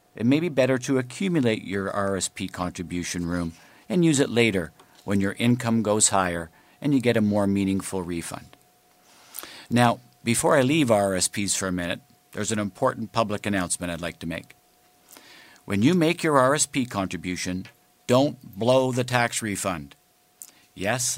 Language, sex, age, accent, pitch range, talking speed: English, male, 50-69, American, 95-120 Hz, 155 wpm